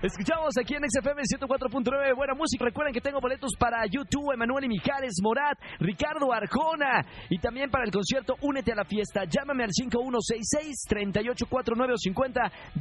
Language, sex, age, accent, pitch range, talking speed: Spanish, male, 40-59, Mexican, 210-265 Hz, 145 wpm